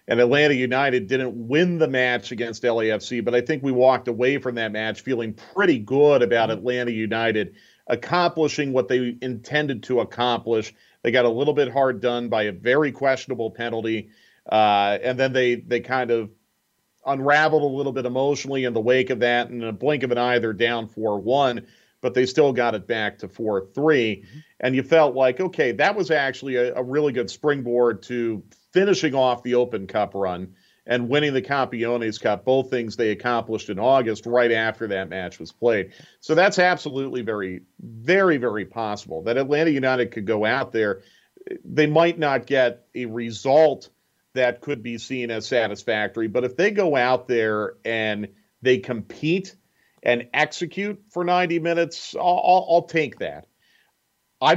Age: 40-59